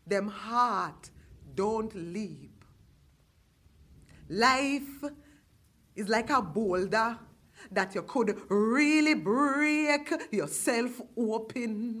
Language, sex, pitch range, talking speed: English, female, 200-310 Hz, 80 wpm